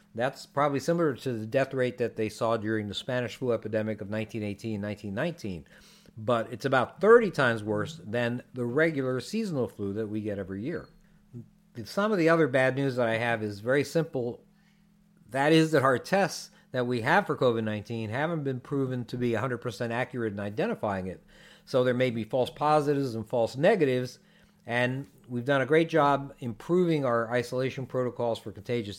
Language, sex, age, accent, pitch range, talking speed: English, male, 50-69, American, 110-145 Hz, 180 wpm